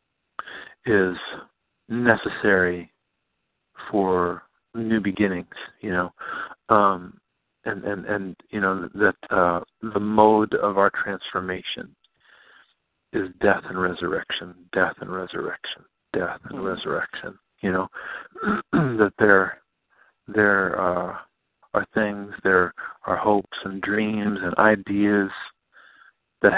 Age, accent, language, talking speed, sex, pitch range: 50-69, American, English, 105 wpm, male, 95-105 Hz